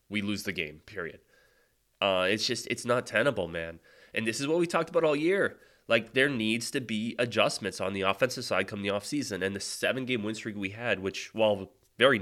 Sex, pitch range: male, 90-110 Hz